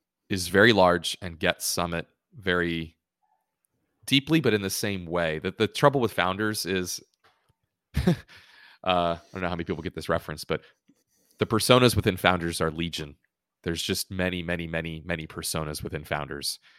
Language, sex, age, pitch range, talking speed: English, male, 30-49, 85-105 Hz, 155 wpm